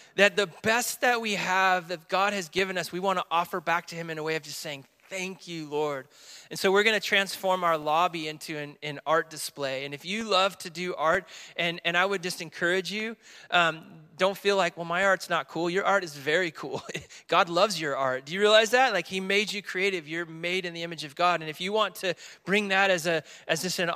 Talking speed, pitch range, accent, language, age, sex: 245 wpm, 165-195 Hz, American, English, 30-49, male